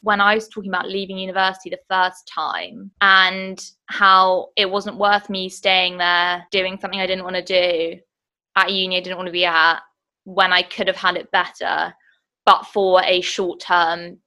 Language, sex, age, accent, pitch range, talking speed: English, female, 20-39, British, 180-215 Hz, 185 wpm